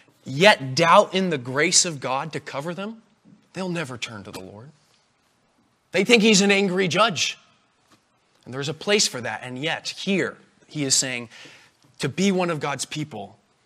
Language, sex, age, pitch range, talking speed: English, male, 20-39, 125-185 Hz, 175 wpm